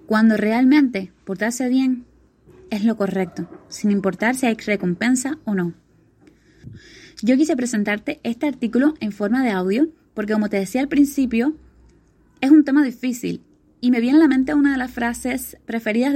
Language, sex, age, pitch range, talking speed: Spanish, female, 20-39, 210-260 Hz, 165 wpm